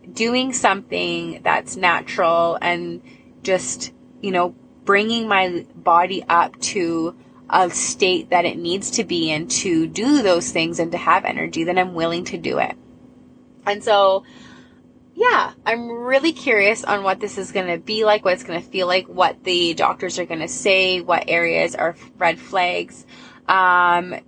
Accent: American